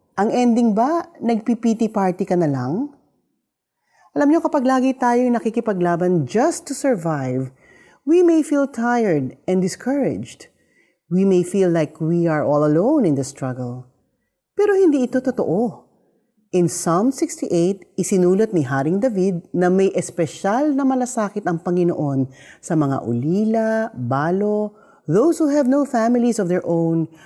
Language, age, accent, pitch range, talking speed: Filipino, 40-59, native, 160-235 Hz, 140 wpm